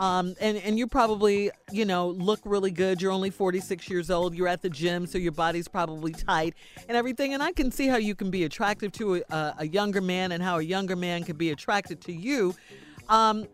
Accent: American